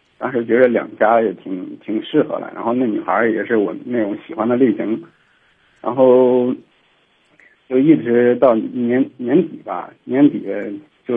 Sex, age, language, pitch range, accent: male, 50-69, Chinese, 115-165 Hz, native